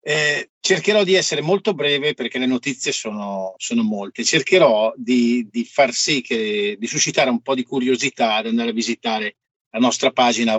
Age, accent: 50-69, native